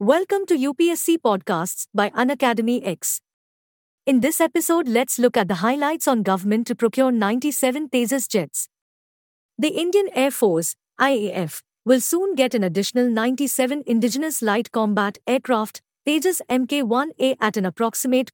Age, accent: 50-69, Indian